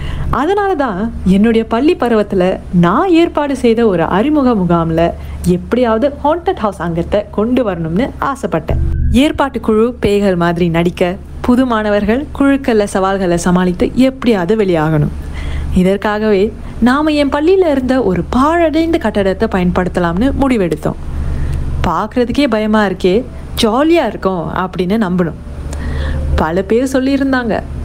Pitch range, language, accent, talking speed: 170-255 Hz, Tamil, native, 105 wpm